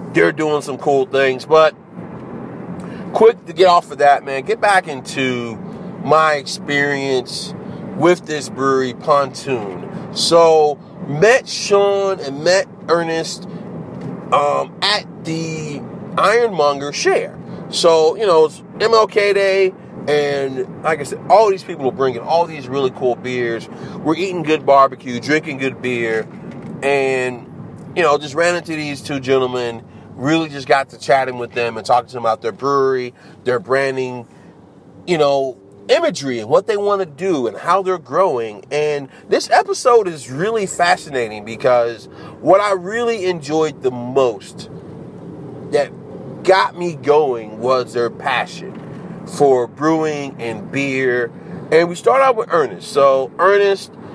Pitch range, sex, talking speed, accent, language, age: 135-190 Hz, male, 145 wpm, American, English, 40-59